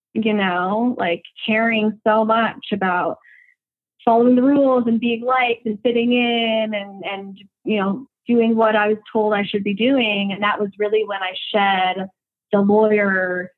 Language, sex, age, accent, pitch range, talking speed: English, female, 20-39, American, 195-235 Hz, 170 wpm